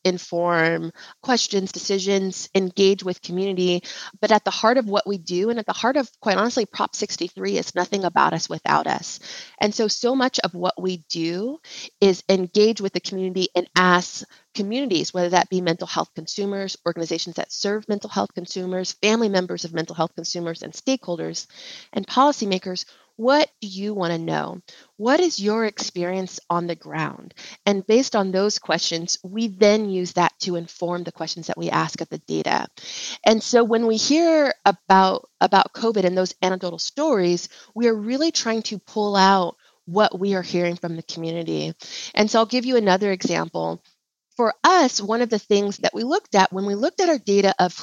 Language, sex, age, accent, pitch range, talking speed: English, female, 30-49, American, 175-220 Hz, 185 wpm